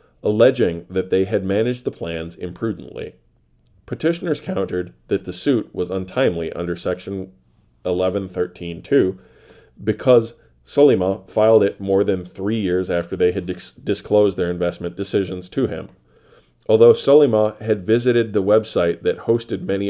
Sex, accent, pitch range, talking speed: male, American, 90-115 Hz, 135 wpm